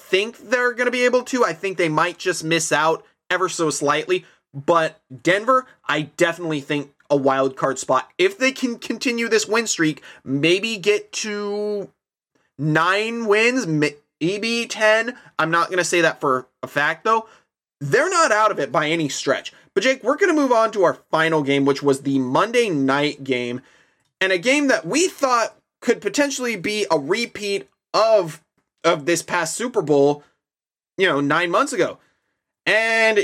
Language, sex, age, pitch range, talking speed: English, male, 20-39, 150-220 Hz, 180 wpm